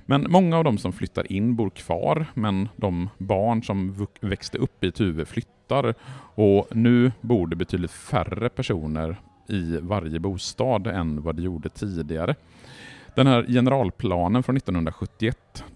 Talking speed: 145 wpm